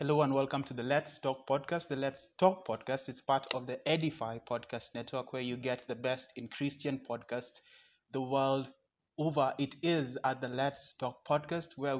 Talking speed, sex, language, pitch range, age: 190 wpm, male, English, 125-145 Hz, 20-39